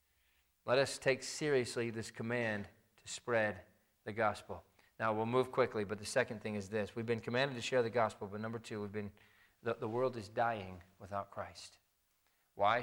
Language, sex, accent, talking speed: English, male, American, 185 wpm